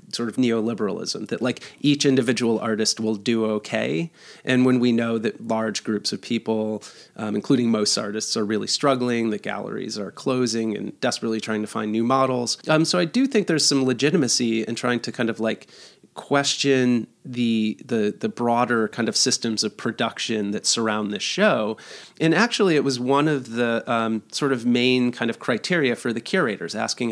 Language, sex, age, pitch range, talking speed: English, male, 30-49, 115-140 Hz, 185 wpm